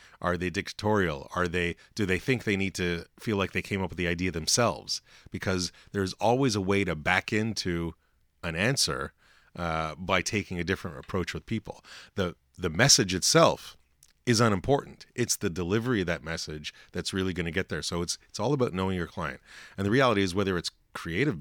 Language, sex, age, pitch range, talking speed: English, male, 30-49, 85-105 Hz, 200 wpm